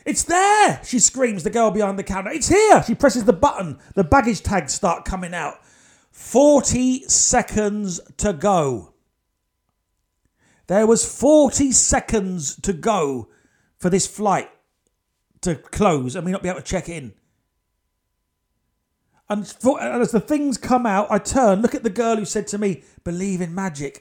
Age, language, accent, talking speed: 40-59, English, British, 155 wpm